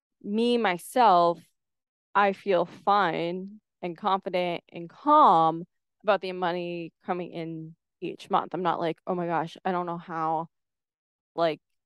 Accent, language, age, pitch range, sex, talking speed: American, English, 20-39, 175-205 Hz, female, 135 wpm